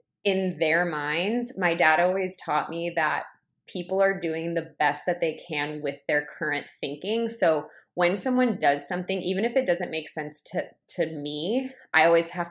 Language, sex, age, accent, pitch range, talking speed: English, female, 20-39, American, 155-185 Hz, 180 wpm